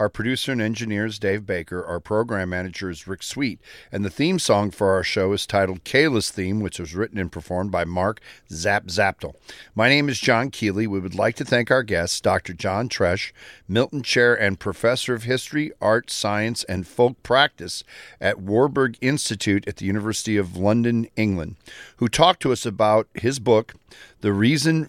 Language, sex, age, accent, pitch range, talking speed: English, male, 50-69, American, 95-120 Hz, 185 wpm